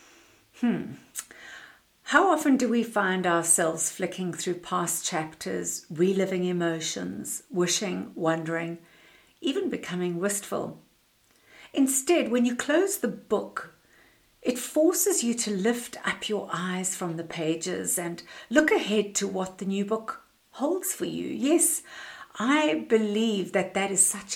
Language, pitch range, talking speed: English, 175-235 Hz, 130 wpm